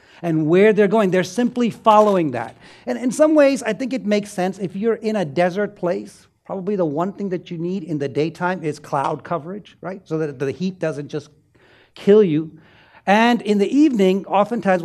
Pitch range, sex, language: 140-195 Hz, male, English